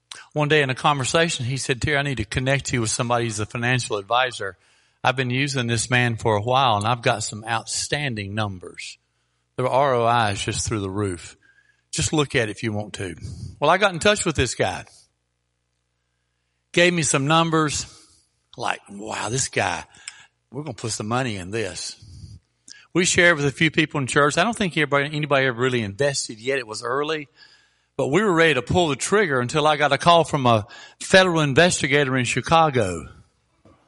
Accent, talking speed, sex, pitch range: American, 195 wpm, male, 115-165 Hz